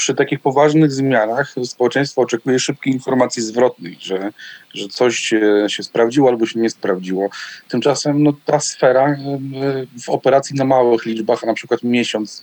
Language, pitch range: Polish, 115-140 Hz